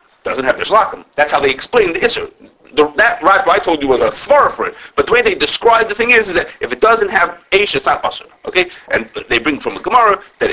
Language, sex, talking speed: English, male, 255 wpm